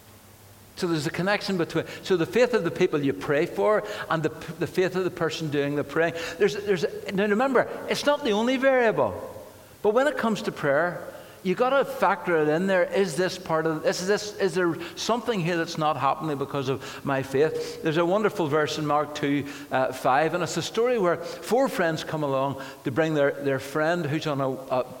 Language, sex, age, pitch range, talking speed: English, male, 60-79, 125-175 Hz, 215 wpm